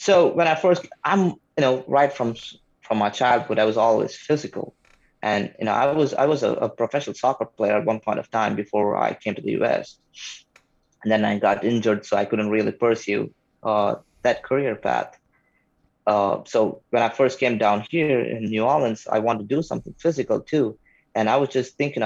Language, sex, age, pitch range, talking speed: English, male, 20-39, 110-135 Hz, 210 wpm